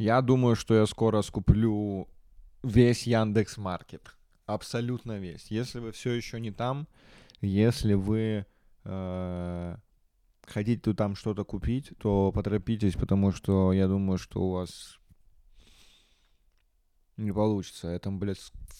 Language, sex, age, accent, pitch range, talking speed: Russian, male, 20-39, native, 90-110 Hz, 120 wpm